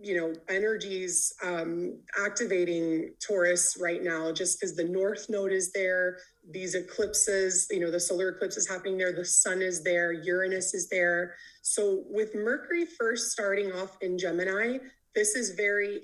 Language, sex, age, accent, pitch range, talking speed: English, female, 20-39, American, 185-230 Hz, 160 wpm